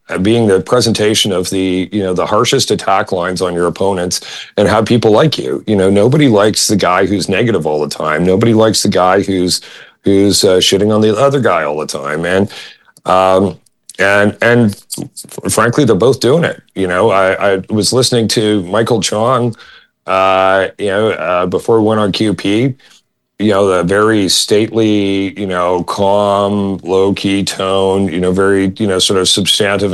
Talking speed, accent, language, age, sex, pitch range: 180 wpm, American, English, 40-59, male, 95-110 Hz